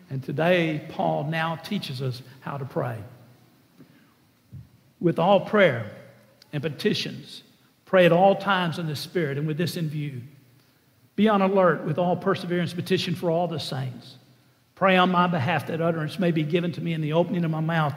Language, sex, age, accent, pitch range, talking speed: English, male, 60-79, American, 135-175 Hz, 180 wpm